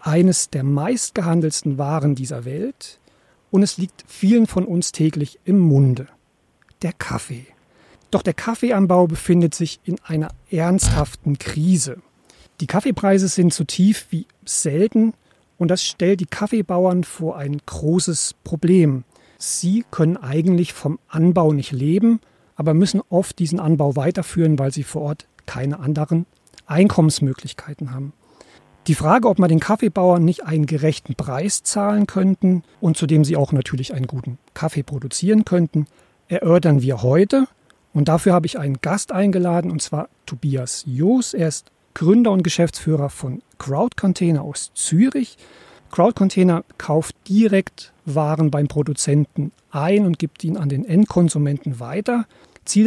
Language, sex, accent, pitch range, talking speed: German, male, German, 145-185 Hz, 145 wpm